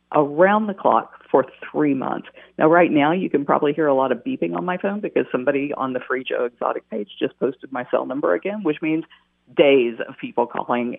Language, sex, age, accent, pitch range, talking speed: English, female, 50-69, American, 125-175 Hz, 220 wpm